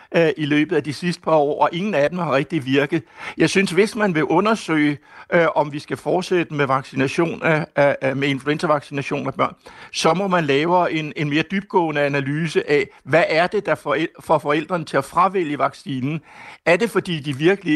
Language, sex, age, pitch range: Danish, male, 60-79, 145-180 Hz